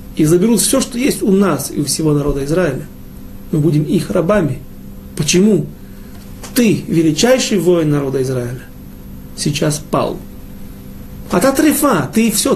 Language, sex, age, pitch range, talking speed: Russian, male, 40-59, 140-185 Hz, 140 wpm